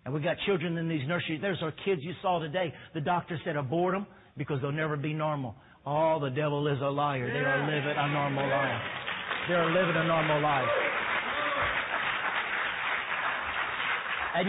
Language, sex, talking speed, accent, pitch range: English, male, 170 wpm, American, 140-170 Hz